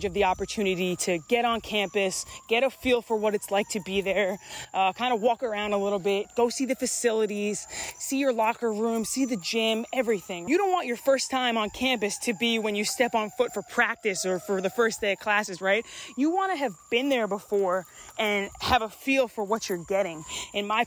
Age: 20-39